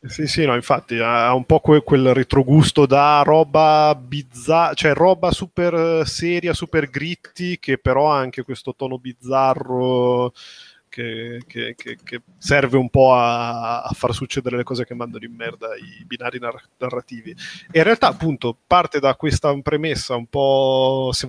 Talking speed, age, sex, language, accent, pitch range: 160 wpm, 30-49, male, Italian, native, 125-160 Hz